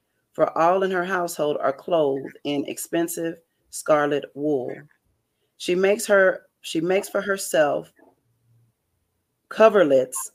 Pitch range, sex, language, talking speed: 145-185 Hz, female, English, 110 wpm